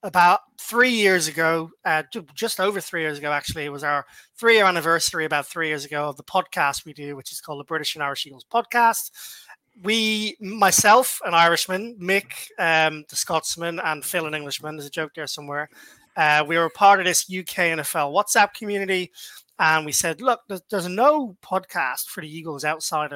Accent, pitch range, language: British, 155-195 Hz, English